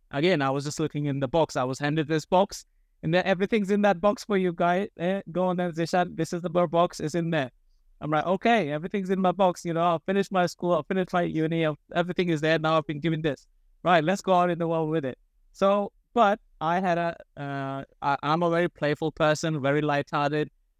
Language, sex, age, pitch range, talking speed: English, male, 20-39, 135-175 Hz, 235 wpm